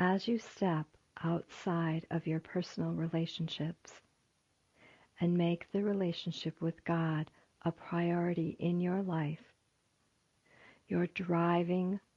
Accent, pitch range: American, 160-180 Hz